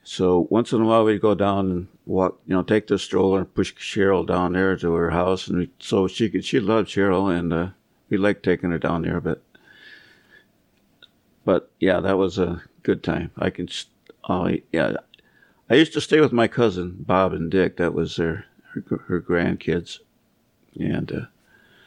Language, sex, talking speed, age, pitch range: English, male, 185 wpm, 60-79, 90-110 Hz